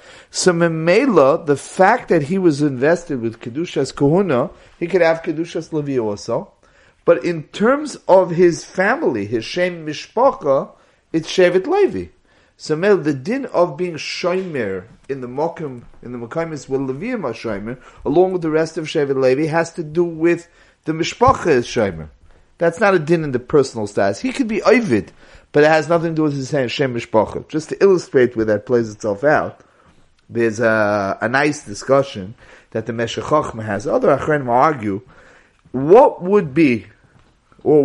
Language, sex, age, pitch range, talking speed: English, male, 40-59, 125-170 Hz, 165 wpm